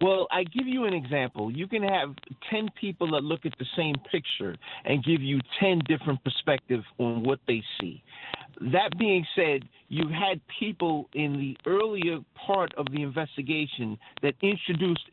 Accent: American